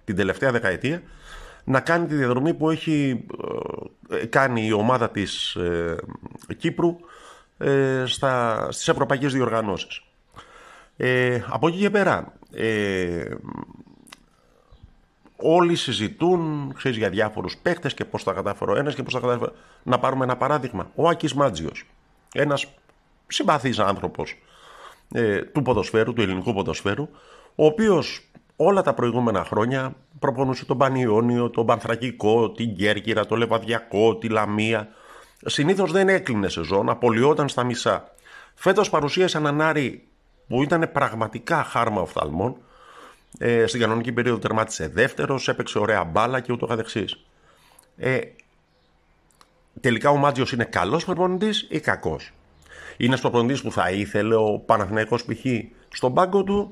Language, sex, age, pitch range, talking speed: Greek, male, 50-69, 110-150 Hz, 125 wpm